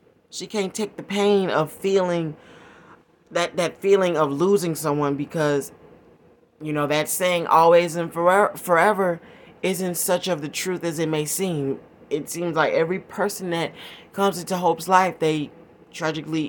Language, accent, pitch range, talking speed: English, American, 150-180 Hz, 155 wpm